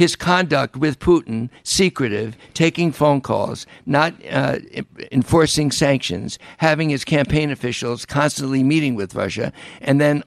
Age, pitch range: 60-79, 115-145 Hz